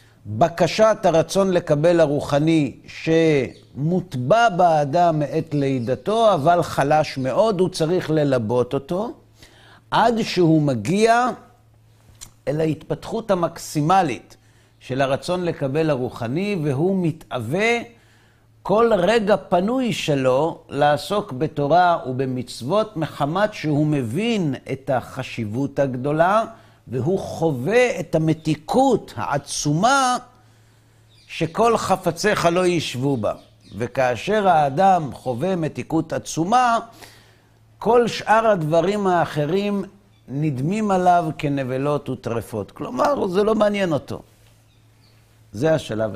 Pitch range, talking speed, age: 120-180 Hz, 90 wpm, 50-69